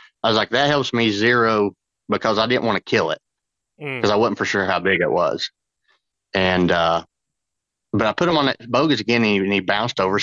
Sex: male